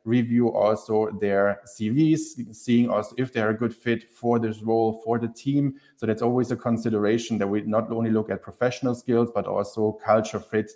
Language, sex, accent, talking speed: Romanian, male, German, 195 wpm